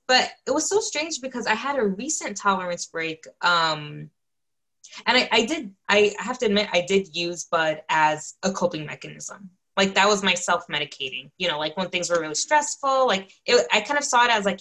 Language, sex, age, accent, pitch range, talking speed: English, female, 20-39, American, 165-215 Hz, 215 wpm